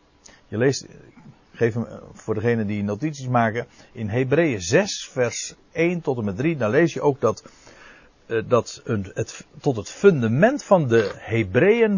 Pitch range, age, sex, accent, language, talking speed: 105-150 Hz, 60-79, male, Dutch, Dutch, 150 wpm